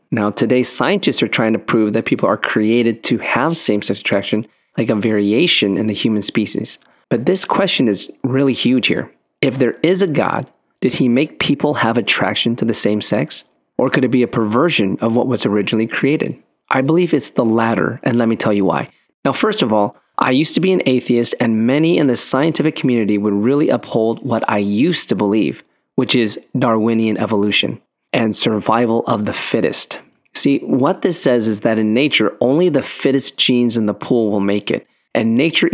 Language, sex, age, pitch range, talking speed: English, male, 30-49, 105-130 Hz, 200 wpm